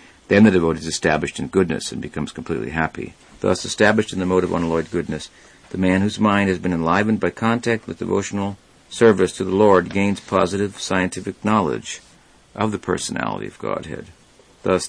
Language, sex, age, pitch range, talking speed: English, male, 50-69, 90-110 Hz, 175 wpm